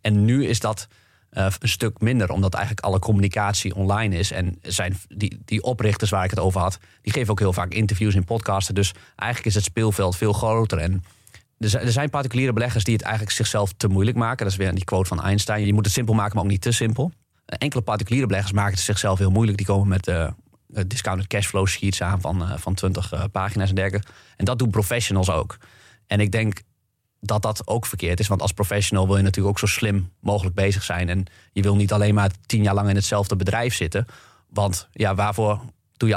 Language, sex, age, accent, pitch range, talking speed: Dutch, male, 30-49, Dutch, 95-110 Hz, 220 wpm